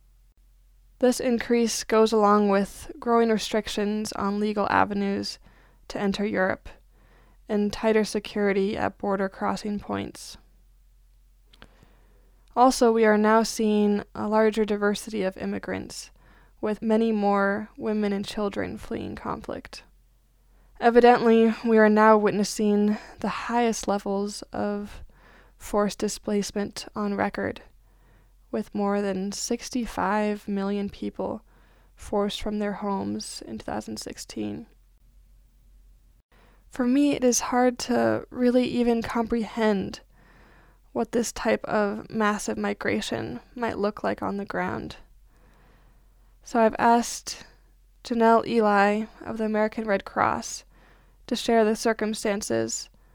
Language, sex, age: English, female, 20-39